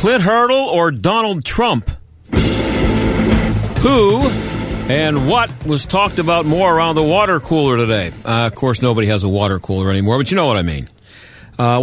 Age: 50-69